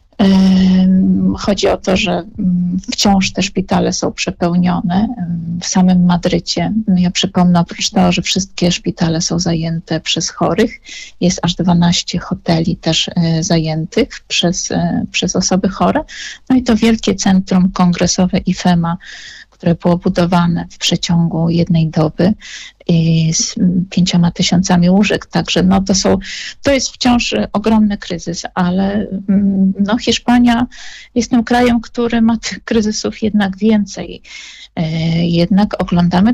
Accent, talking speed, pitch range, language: native, 125 wpm, 175-220 Hz, Polish